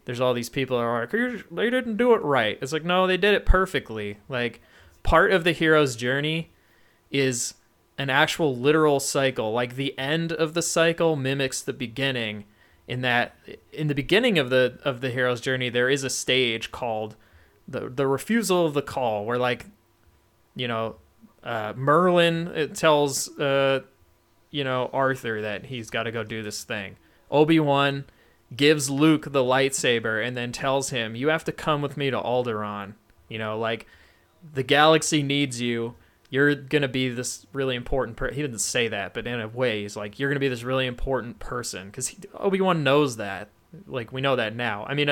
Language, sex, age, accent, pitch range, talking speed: English, male, 30-49, American, 110-140 Hz, 185 wpm